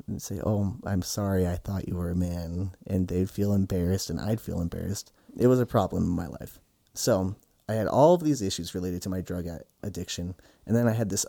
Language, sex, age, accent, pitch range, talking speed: English, male, 30-49, American, 95-115 Hz, 230 wpm